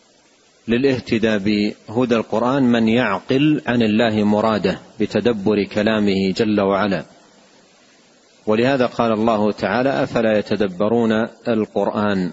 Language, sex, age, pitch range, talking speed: Arabic, male, 40-59, 105-130 Hz, 90 wpm